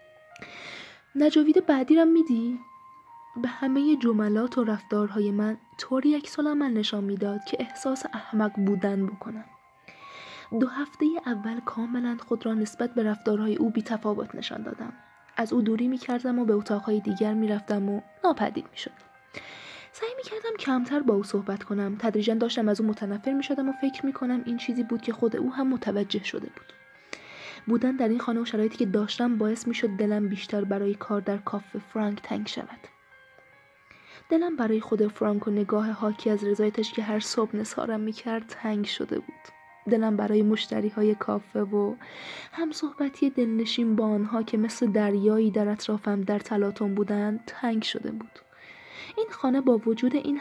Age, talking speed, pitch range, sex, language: 20-39, 165 wpm, 210-260 Hz, female, Persian